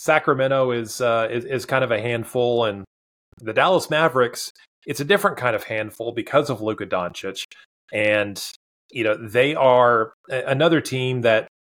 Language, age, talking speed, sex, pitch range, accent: English, 30-49, 160 wpm, male, 115-140 Hz, American